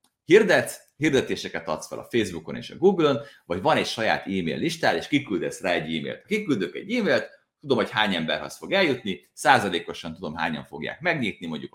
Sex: male